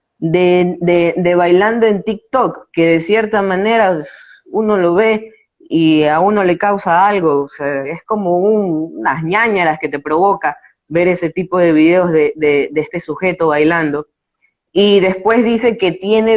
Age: 20-39